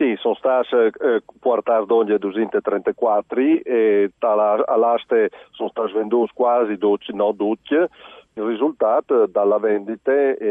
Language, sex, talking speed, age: Italian, male, 115 wpm, 50-69